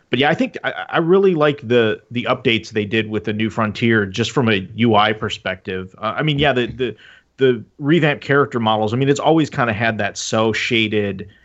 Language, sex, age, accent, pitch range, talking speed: English, male, 30-49, American, 105-120 Hz, 220 wpm